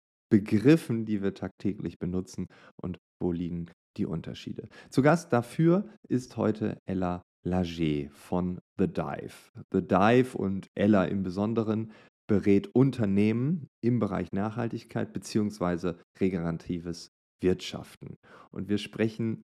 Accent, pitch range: German, 90-120 Hz